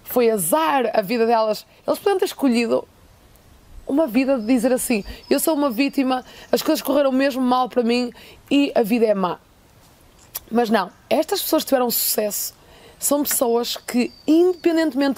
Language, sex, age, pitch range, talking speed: Portuguese, female, 20-39, 220-275 Hz, 160 wpm